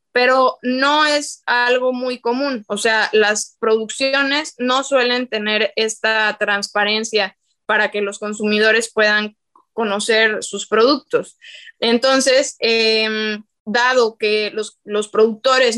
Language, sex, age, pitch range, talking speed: Spanish, female, 20-39, 225-265 Hz, 115 wpm